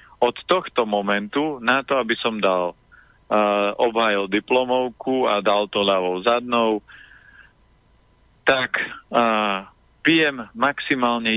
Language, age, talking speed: Slovak, 30-49, 100 wpm